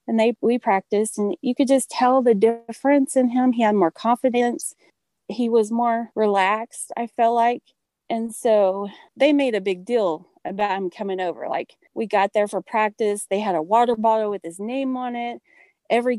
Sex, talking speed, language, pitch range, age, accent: female, 195 wpm, English, 190-240 Hz, 30-49, American